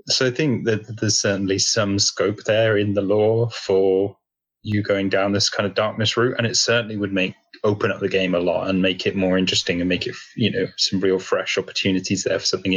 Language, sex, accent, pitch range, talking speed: English, male, British, 90-105 Hz, 230 wpm